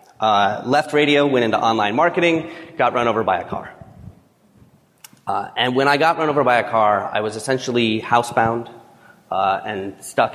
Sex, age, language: male, 30-49, English